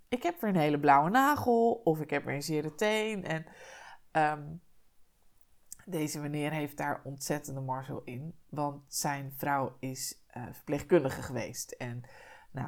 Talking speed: 140 wpm